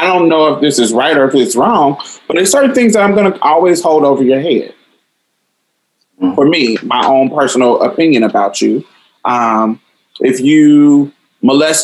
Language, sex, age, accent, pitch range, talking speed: English, male, 20-39, American, 120-190 Hz, 175 wpm